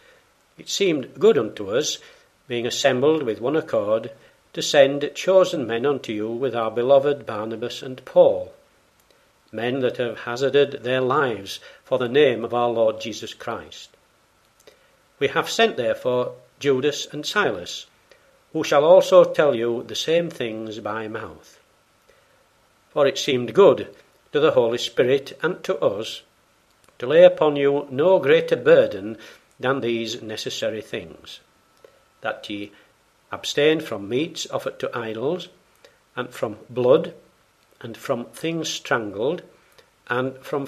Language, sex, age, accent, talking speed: English, male, 60-79, British, 135 wpm